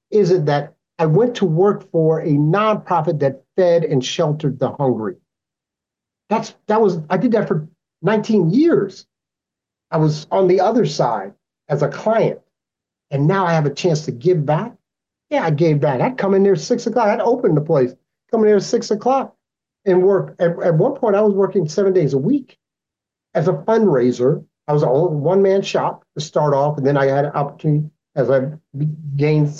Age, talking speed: 40-59, 200 wpm